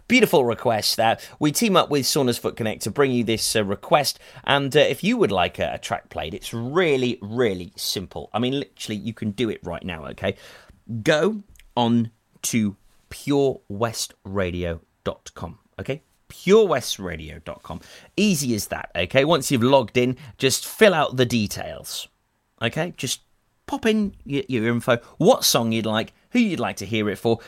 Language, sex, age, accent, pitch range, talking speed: English, male, 30-49, British, 110-170 Hz, 170 wpm